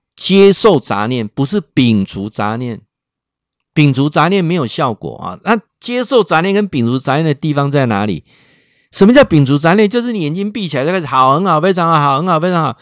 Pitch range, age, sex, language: 140-205 Hz, 50-69, male, Chinese